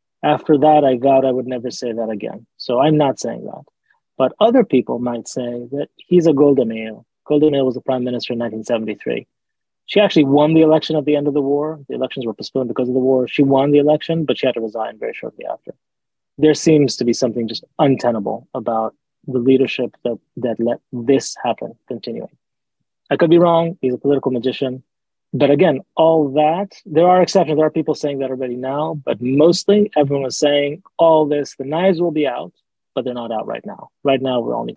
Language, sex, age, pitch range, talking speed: English, male, 30-49, 130-160 Hz, 210 wpm